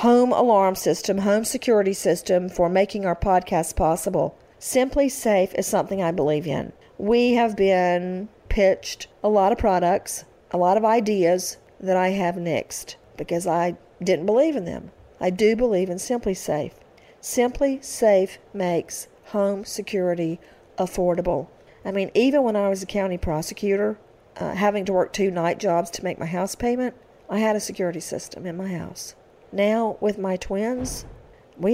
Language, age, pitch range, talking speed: English, 50-69, 180-215 Hz, 165 wpm